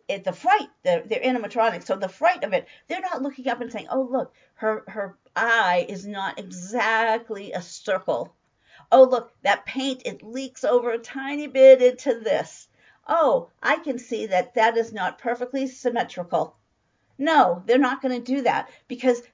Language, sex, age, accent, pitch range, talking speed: English, female, 50-69, American, 200-265 Hz, 170 wpm